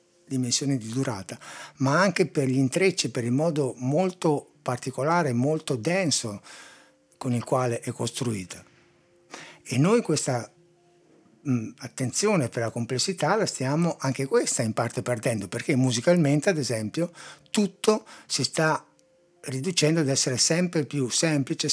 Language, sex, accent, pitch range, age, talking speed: Italian, male, native, 130-165 Hz, 60-79, 135 wpm